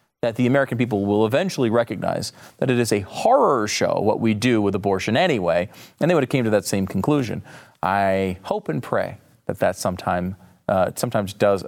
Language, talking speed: English, 190 wpm